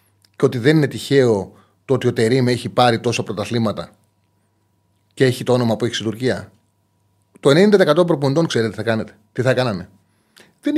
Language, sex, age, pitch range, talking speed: Greek, male, 30-49, 110-150 Hz, 180 wpm